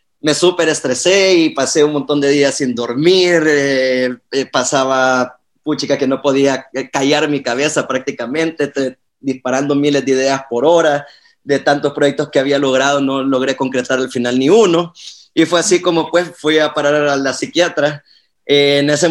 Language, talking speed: Spanish, 175 wpm